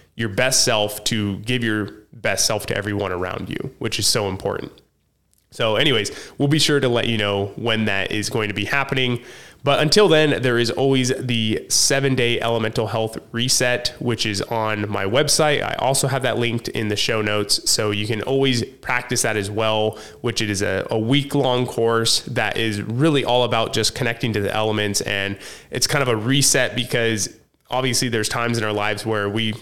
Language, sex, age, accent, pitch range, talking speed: English, male, 20-39, American, 110-130 Hz, 195 wpm